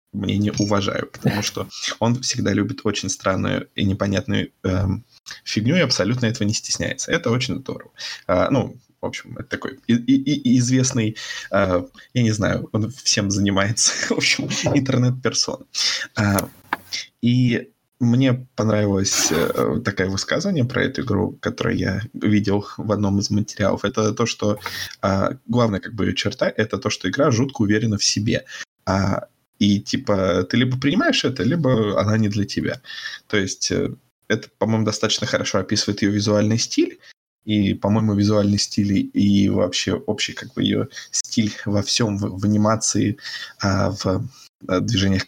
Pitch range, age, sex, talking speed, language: 100-115 Hz, 20-39, male, 150 wpm, Russian